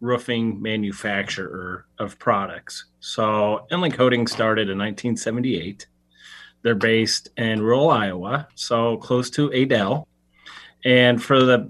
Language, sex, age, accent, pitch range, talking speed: English, male, 30-49, American, 105-125 Hz, 115 wpm